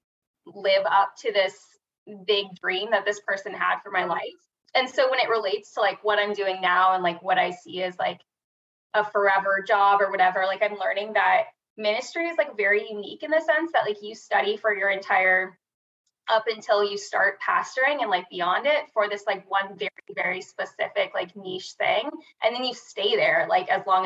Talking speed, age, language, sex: 205 wpm, 20-39, English, female